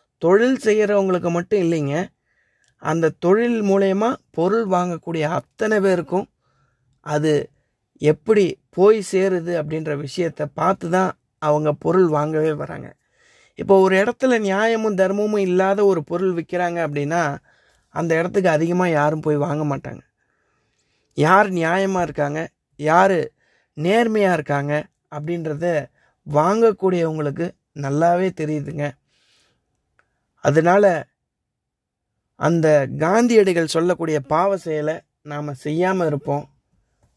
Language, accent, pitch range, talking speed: Tamil, native, 150-190 Hz, 95 wpm